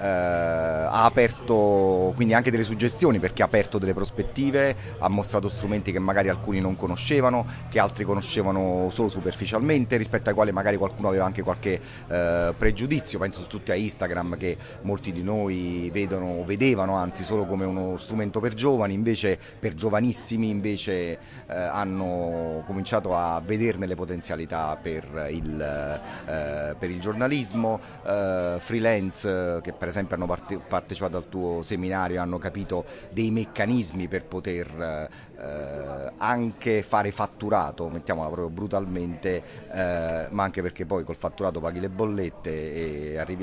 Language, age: Italian, 30-49